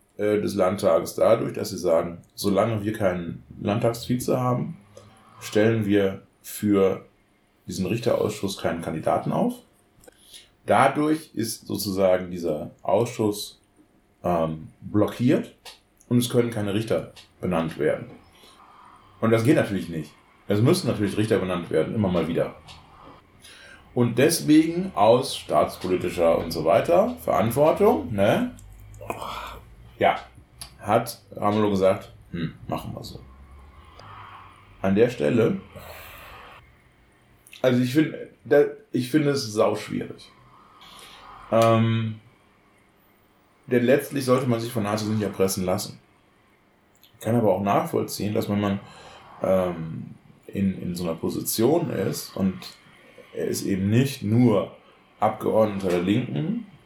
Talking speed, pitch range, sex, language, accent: 115 wpm, 95-115 Hz, male, German, German